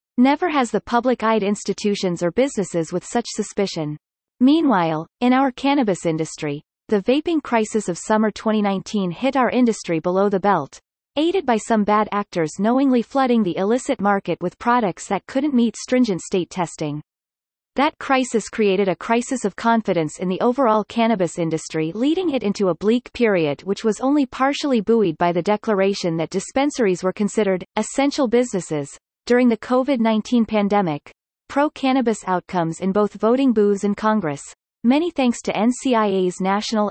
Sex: female